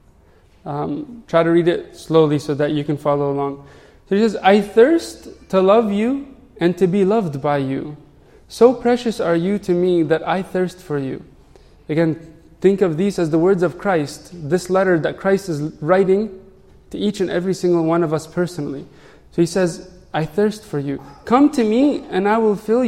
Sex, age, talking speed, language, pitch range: male, 20-39, 195 wpm, English, 165-215 Hz